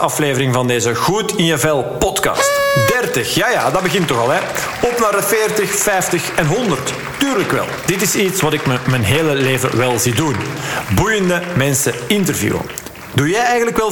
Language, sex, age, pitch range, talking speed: Dutch, male, 40-59, 130-195 Hz, 180 wpm